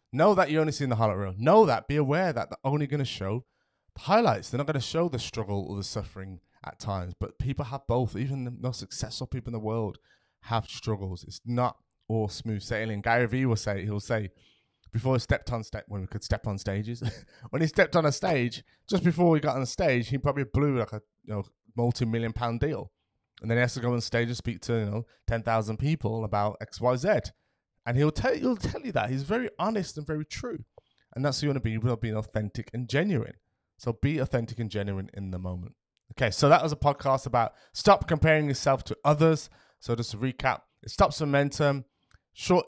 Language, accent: English, British